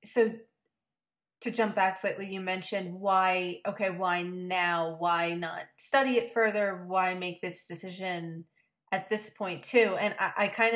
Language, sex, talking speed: English, female, 155 wpm